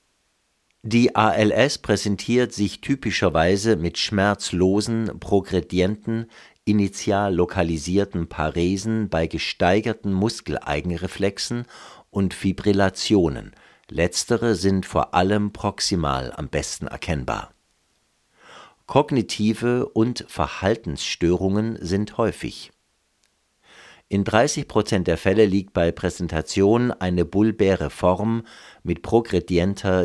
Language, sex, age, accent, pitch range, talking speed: German, male, 50-69, German, 85-110 Hz, 80 wpm